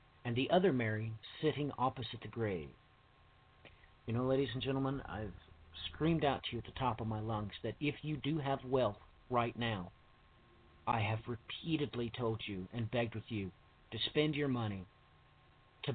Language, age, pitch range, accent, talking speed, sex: English, 50-69, 105-140 Hz, American, 175 wpm, male